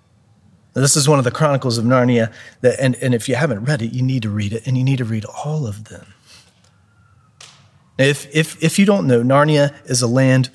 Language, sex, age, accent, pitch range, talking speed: English, male, 40-59, American, 110-140 Hz, 210 wpm